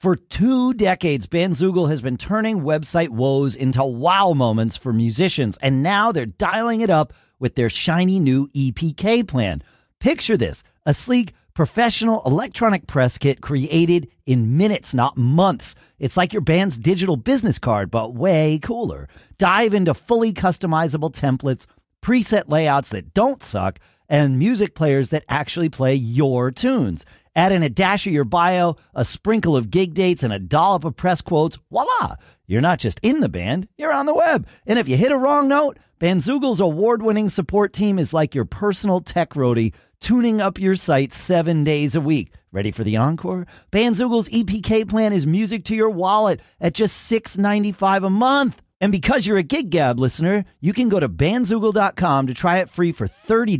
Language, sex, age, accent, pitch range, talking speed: English, male, 40-59, American, 135-210 Hz, 175 wpm